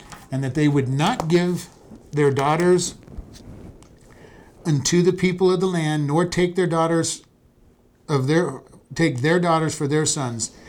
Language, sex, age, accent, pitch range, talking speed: English, male, 50-69, American, 135-175 Hz, 145 wpm